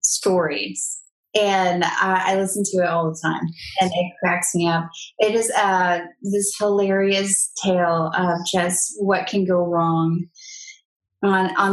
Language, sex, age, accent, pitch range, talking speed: English, female, 20-39, American, 180-225 Hz, 150 wpm